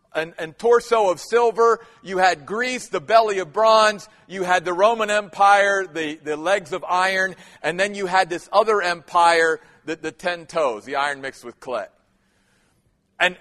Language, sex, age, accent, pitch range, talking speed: English, male, 40-59, American, 180-235 Hz, 175 wpm